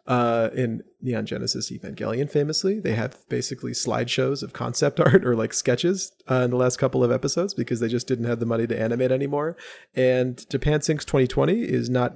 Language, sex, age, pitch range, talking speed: English, male, 30-49, 120-145 Hz, 190 wpm